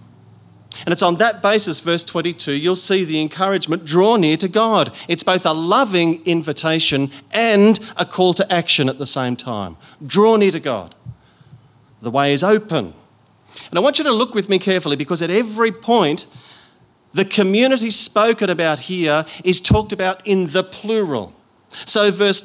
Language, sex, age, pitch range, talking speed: English, male, 40-59, 145-195 Hz, 170 wpm